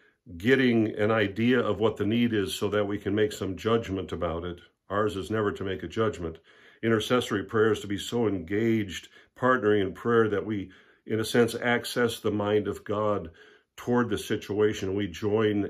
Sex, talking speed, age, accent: male, 185 wpm, 60-79, American